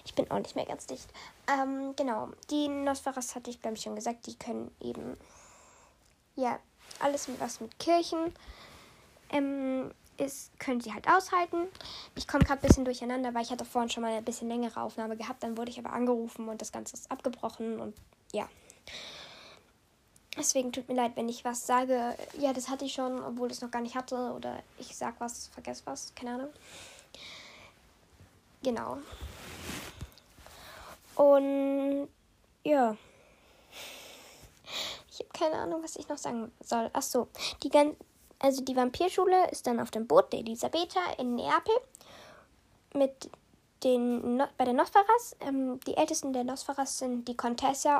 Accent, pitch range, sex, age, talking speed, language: German, 240-290 Hz, female, 10-29, 165 wpm, German